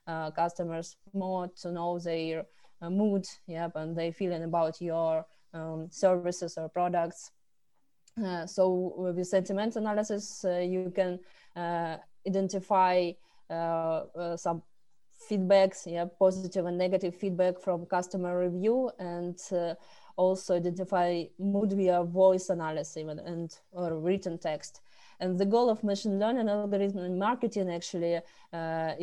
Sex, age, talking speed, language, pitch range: female, 20-39, 130 wpm, English, 175-190 Hz